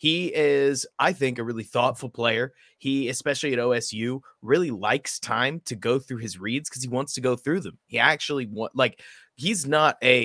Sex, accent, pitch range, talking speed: male, American, 120-165 Hz, 195 wpm